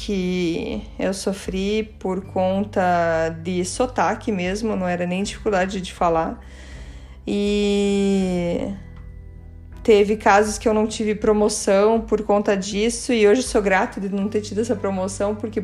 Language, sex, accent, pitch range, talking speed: Portuguese, female, Brazilian, 185-230 Hz, 140 wpm